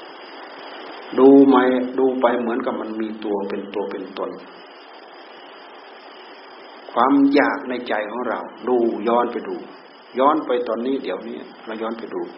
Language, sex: Thai, male